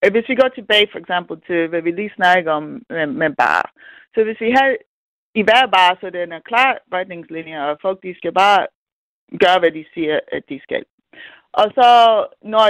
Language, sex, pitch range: Danish, female, 195-270 Hz